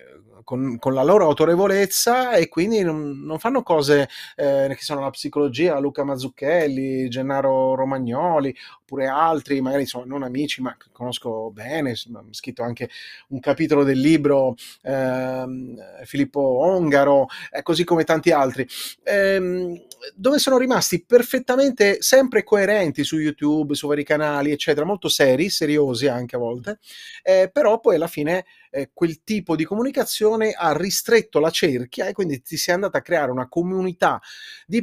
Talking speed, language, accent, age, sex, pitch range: 145 wpm, Italian, native, 30-49, male, 135-190 Hz